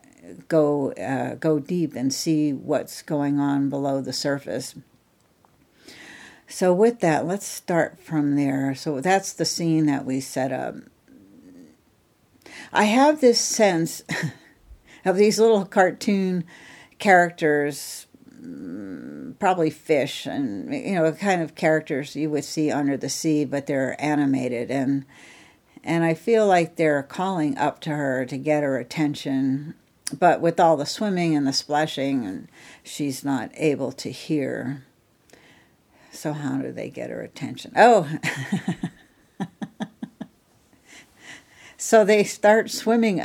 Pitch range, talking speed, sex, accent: 145-190 Hz, 130 wpm, female, American